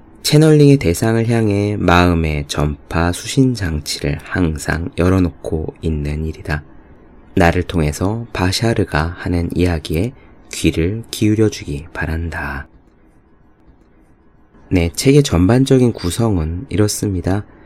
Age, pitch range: 20-39, 80-105 Hz